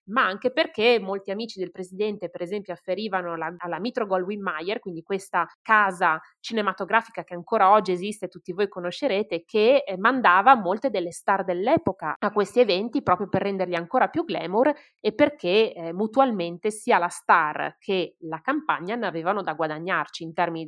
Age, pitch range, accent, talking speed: 30-49, 175-240 Hz, native, 165 wpm